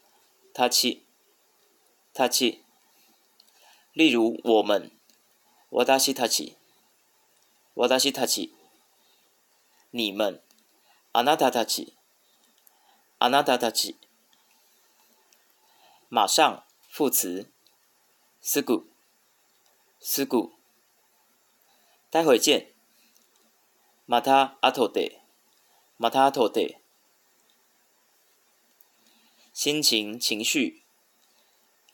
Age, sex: 30-49, male